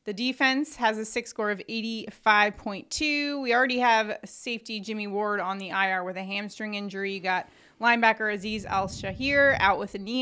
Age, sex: 20-39, female